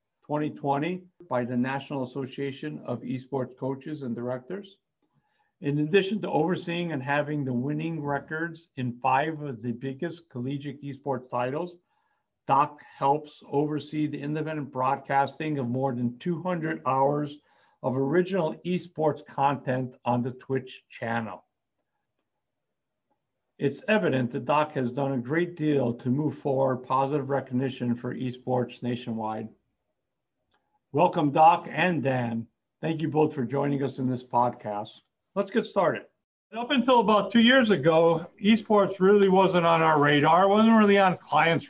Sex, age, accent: male, 50-69, American